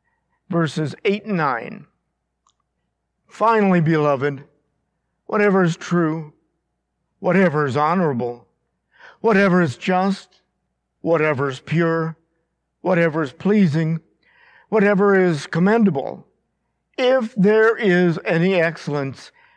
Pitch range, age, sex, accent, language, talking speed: 155-195 Hz, 50-69, male, American, English, 90 wpm